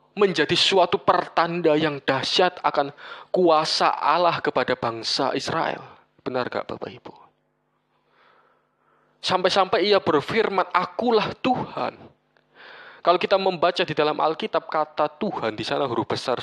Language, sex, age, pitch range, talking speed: Indonesian, male, 20-39, 120-185 Hz, 115 wpm